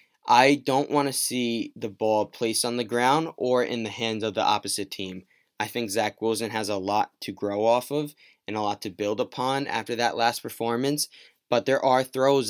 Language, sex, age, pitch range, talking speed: English, male, 20-39, 105-120 Hz, 210 wpm